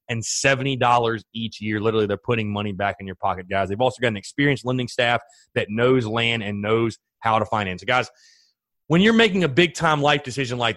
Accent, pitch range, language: American, 115-150 Hz, English